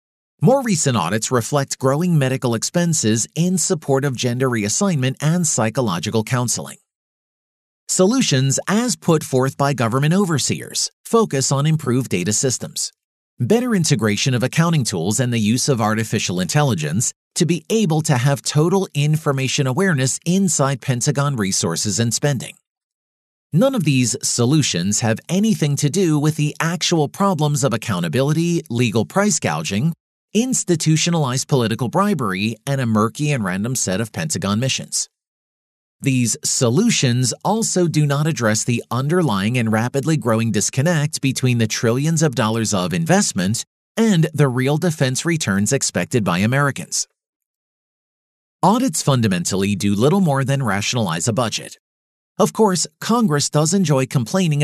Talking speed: 135 wpm